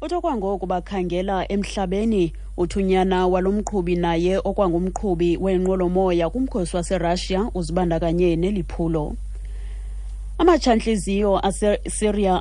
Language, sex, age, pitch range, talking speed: English, female, 30-49, 170-195 Hz, 120 wpm